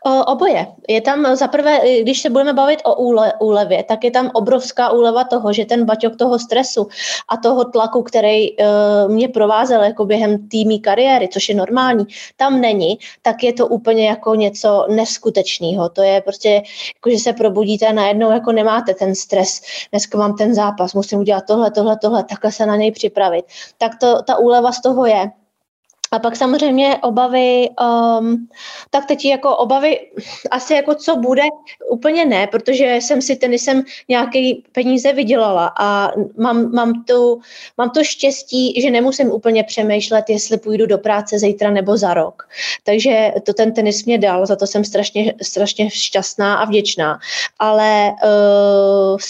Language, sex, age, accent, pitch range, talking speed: Czech, female, 20-39, native, 210-255 Hz, 165 wpm